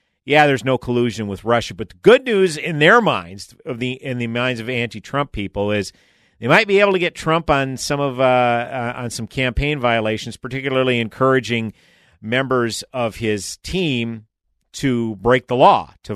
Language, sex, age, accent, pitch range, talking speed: English, male, 50-69, American, 100-130 Hz, 180 wpm